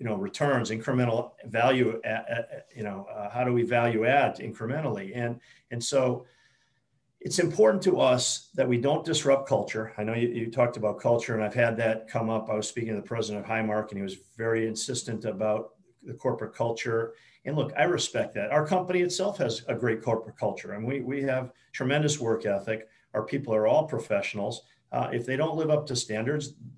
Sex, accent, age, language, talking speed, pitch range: male, American, 50-69, English, 200 wpm, 115-145 Hz